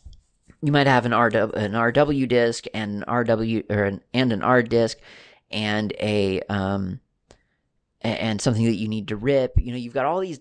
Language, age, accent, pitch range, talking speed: English, 30-49, American, 105-135 Hz, 190 wpm